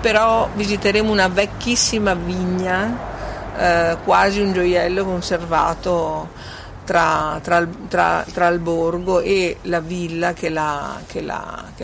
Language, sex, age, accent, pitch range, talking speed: Italian, female, 50-69, native, 165-200 Hz, 90 wpm